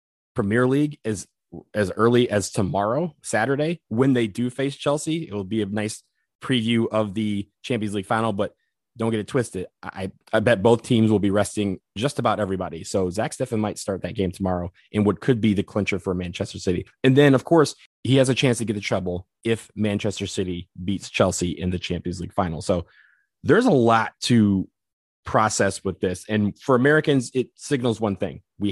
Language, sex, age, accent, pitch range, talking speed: English, male, 20-39, American, 100-120 Hz, 200 wpm